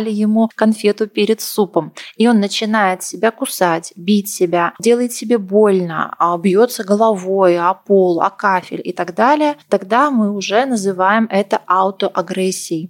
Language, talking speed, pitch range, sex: Russian, 135 wpm, 190-230 Hz, female